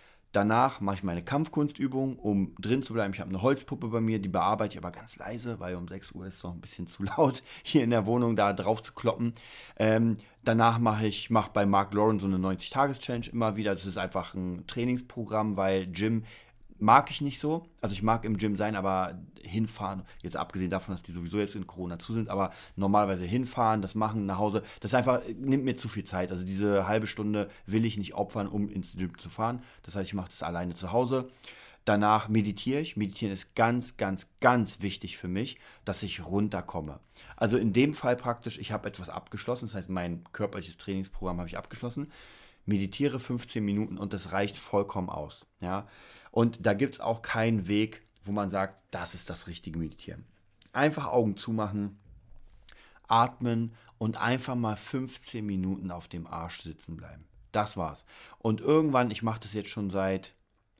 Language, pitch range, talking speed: German, 95-115 Hz, 195 wpm